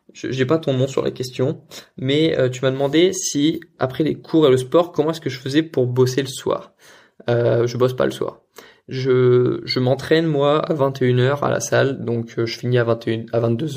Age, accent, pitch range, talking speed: 20-39, French, 120-145 Hz, 220 wpm